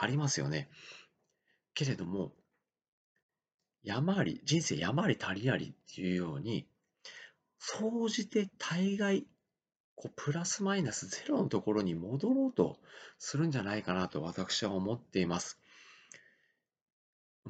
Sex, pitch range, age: male, 100-165 Hz, 40-59